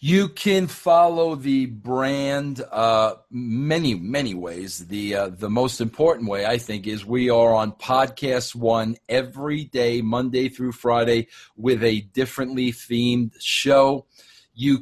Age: 50-69